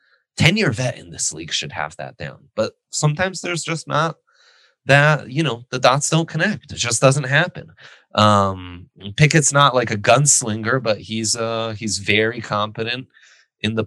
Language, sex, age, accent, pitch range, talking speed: English, male, 30-49, American, 110-150 Hz, 170 wpm